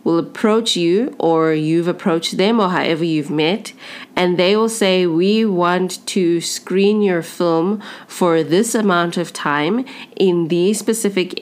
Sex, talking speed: female, 150 wpm